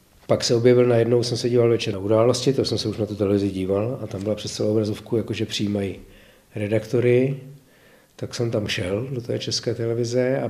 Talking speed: 205 wpm